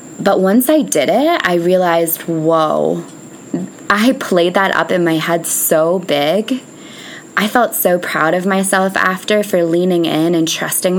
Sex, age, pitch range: female, 20-39, 175-220 Hz